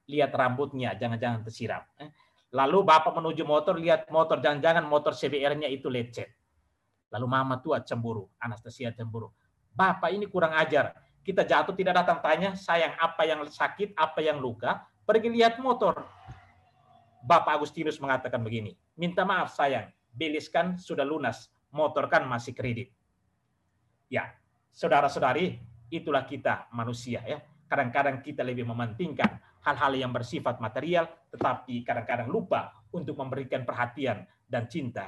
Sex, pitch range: male, 125-165 Hz